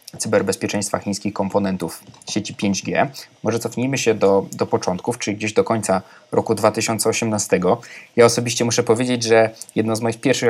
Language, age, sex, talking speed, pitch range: Polish, 20-39, male, 150 wpm, 100-120 Hz